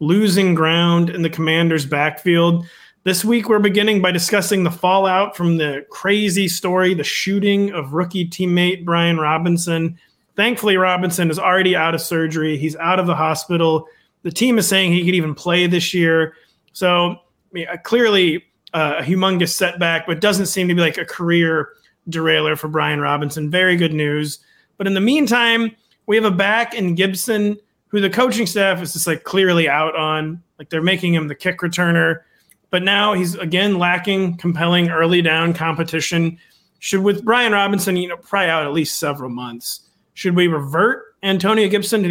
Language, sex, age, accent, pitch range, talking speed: English, male, 30-49, American, 160-195 Hz, 175 wpm